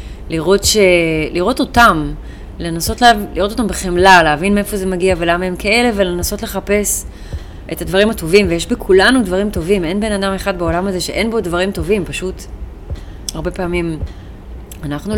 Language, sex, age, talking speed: Hebrew, female, 30-49, 155 wpm